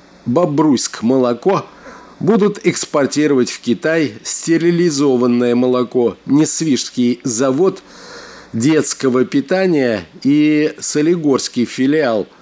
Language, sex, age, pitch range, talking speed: Russian, male, 50-69, 125-160 Hz, 70 wpm